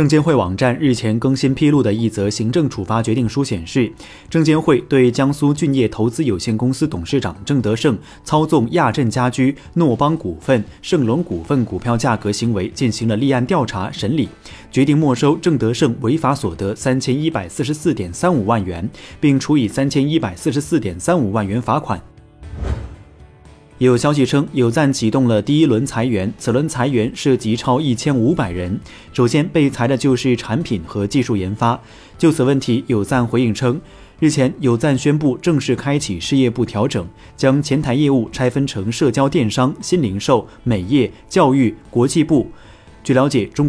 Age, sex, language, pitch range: 30-49, male, Chinese, 110-140 Hz